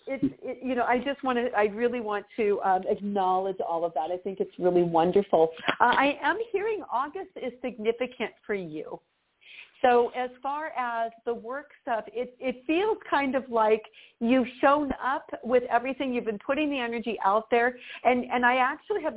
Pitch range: 215-265 Hz